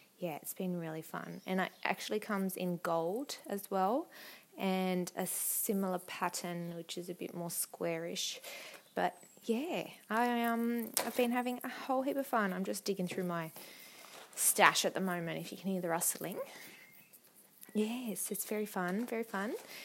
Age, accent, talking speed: 20-39, Australian, 170 wpm